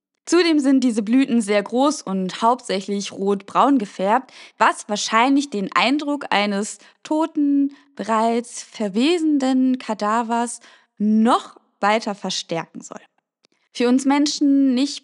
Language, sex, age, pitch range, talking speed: German, female, 20-39, 215-280 Hz, 110 wpm